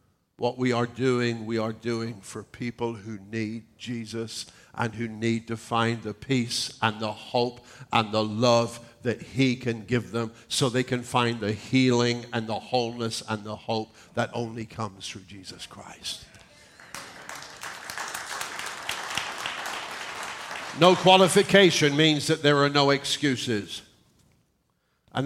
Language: English